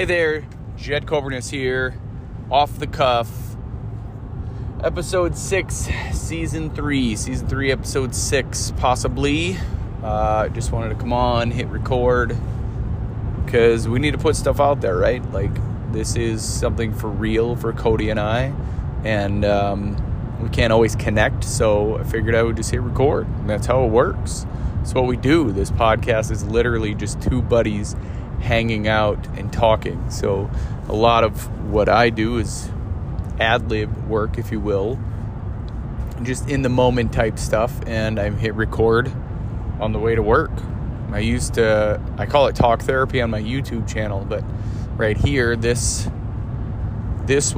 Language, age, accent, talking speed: English, 20-39, American, 160 wpm